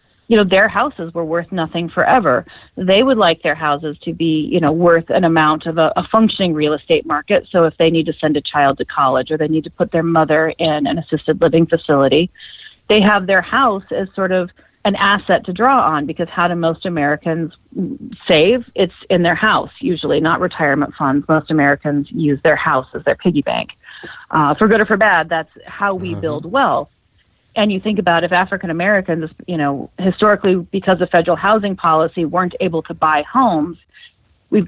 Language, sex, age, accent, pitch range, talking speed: English, female, 30-49, American, 155-190 Hz, 200 wpm